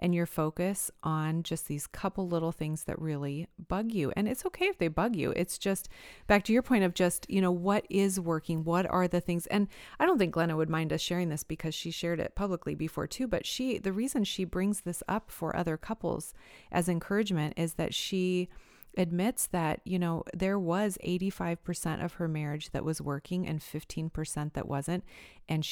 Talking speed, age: 205 wpm, 30-49